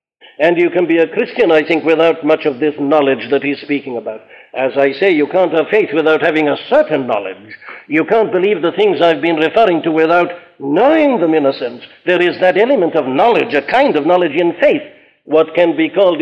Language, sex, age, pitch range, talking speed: English, male, 60-79, 150-185 Hz, 220 wpm